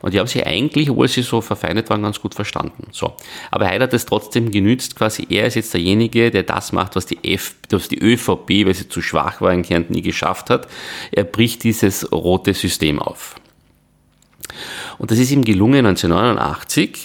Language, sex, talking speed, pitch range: German, male, 190 wpm, 85-110 Hz